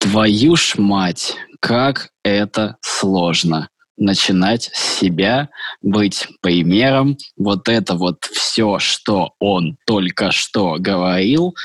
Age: 20-39